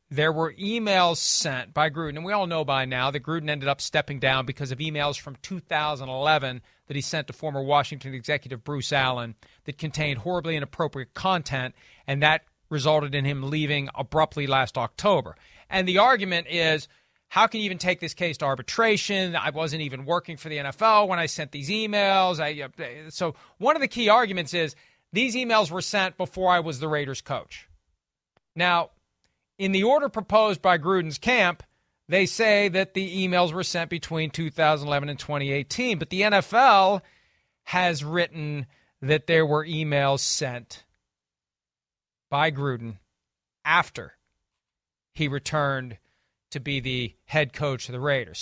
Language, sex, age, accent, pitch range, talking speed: English, male, 40-59, American, 140-190 Hz, 160 wpm